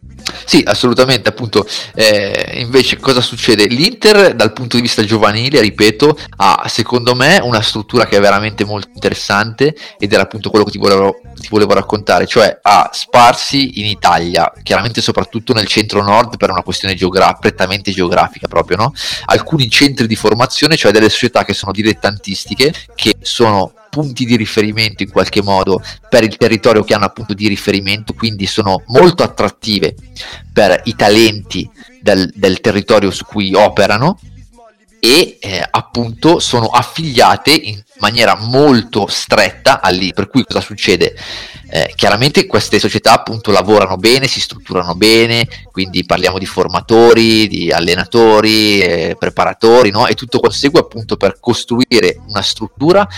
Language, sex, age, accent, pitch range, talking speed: Italian, male, 30-49, native, 100-120 Hz, 150 wpm